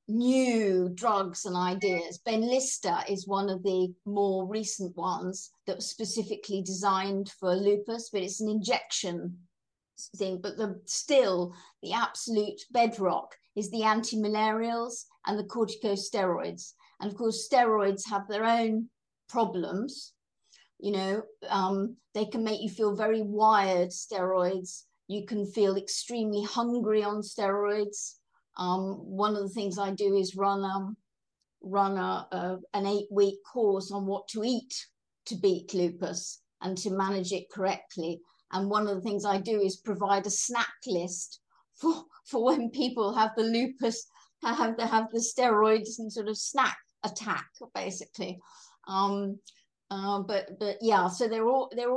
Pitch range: 195-225 Hz